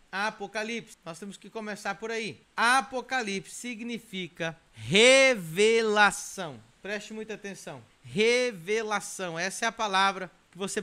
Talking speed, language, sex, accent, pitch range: 110 wpm, Portuguese, male, Brazilian, 175-215 Hz